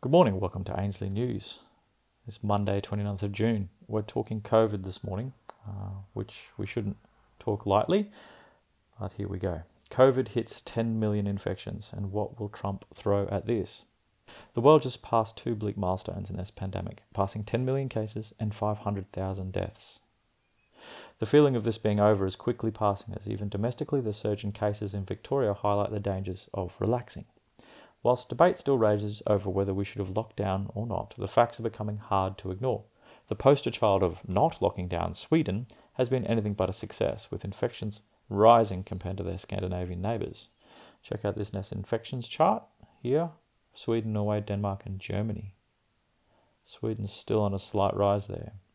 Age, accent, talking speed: 30-49, Australian, 170 wpm